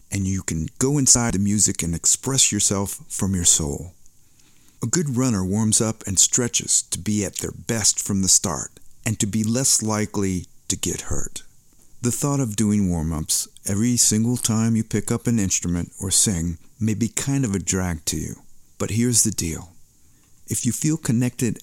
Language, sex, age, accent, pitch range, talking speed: English, male, 50-69, American, 90-120 Hz, 185 wpm